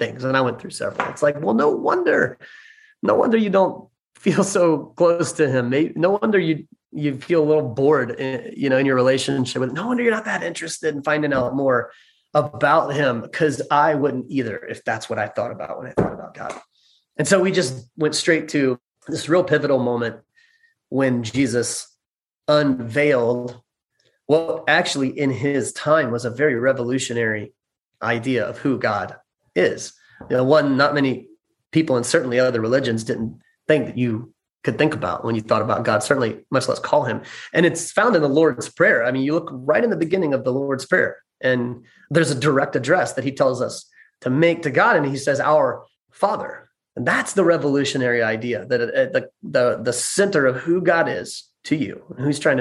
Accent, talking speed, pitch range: American, 200 wpm, 130-170 Hz